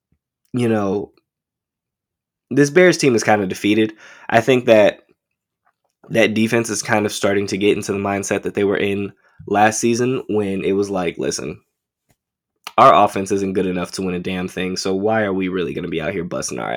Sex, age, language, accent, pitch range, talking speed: male, 10-29, English, American, 95-115 Hz, 200 wpm